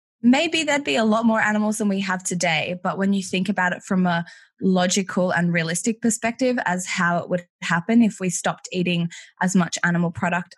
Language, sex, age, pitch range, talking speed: English, female, 20-39, 170-205 Hz, 205 wpm